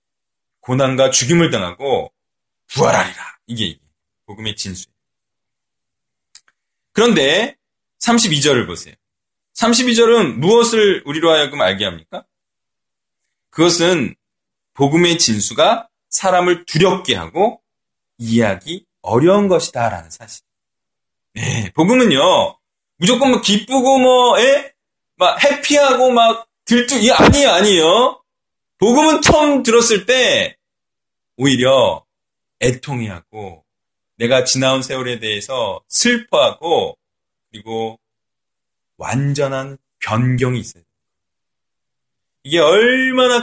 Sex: male